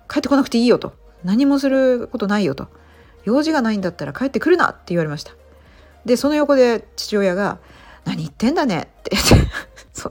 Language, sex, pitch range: Japanese, female, 160-260 Hz